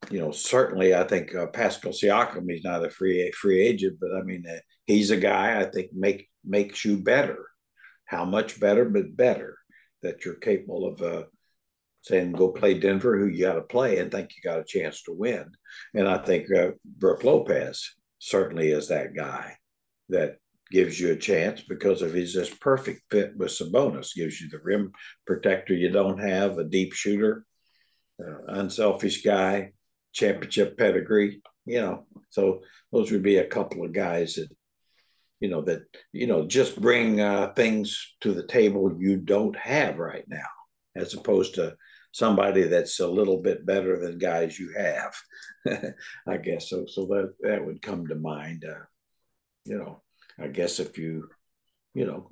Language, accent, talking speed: English, American, 175 wpm